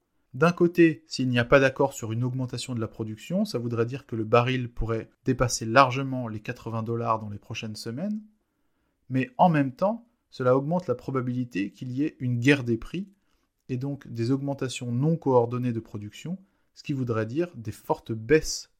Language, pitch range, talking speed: English, 115-150 Hz, 190 wpm